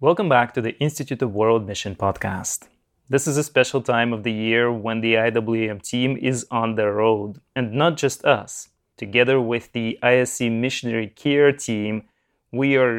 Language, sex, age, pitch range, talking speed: English, male, 30-49, 115-140 Hz, 175 wpm